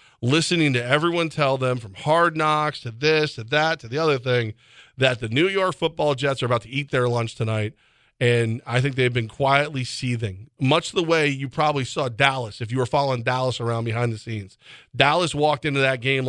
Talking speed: 210 wpm